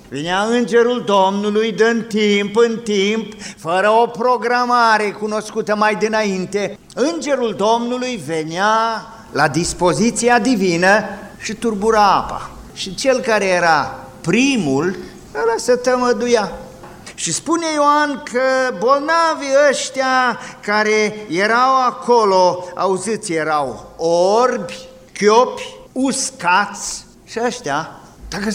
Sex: male